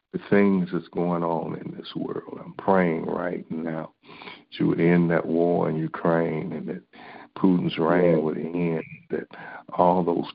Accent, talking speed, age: American, 170 wpm, 60-79